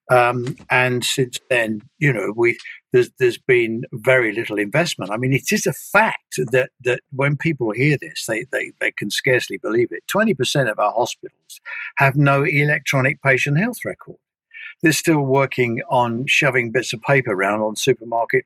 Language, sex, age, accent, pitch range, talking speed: English, male, 60-79, British, 120-185 Hz, 170 wpm